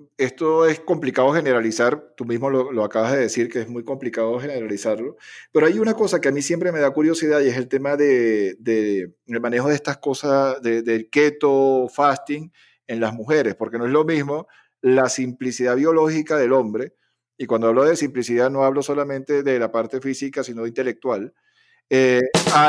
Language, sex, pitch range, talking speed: Spanish, male, 125-155 Hz, 195 wpm